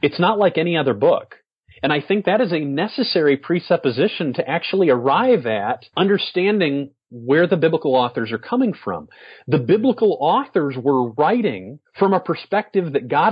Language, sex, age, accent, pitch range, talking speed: English, male, 40-59, American, 135-195 Hz, 160 wpm